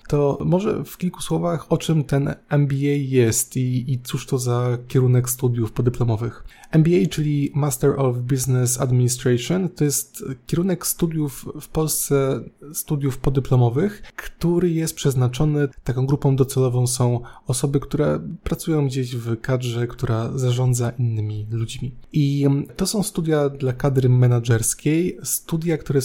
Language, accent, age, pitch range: Polish, native, 20-39, 125-145 Hz